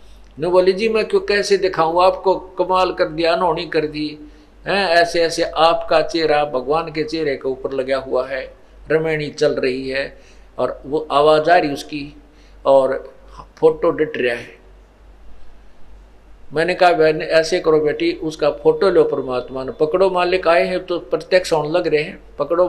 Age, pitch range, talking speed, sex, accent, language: 50-69, 150-185 Hz, 165 wpm, male, native, Hindi